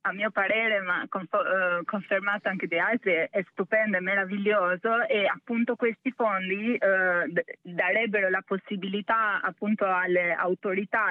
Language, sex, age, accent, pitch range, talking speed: Italian, female, 20-39, native, 190-225 Hz, 120 wpm